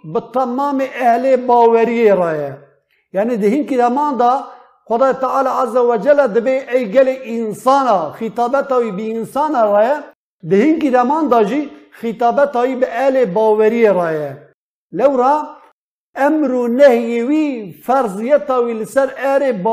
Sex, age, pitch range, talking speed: male, 50-69, 230-275 Hz, 120 wpm